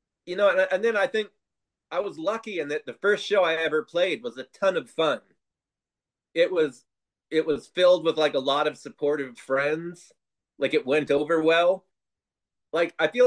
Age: 30-49